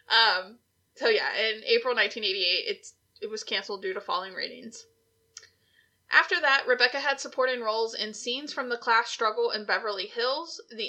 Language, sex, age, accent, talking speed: English, female, 20-39, American, 165 wpm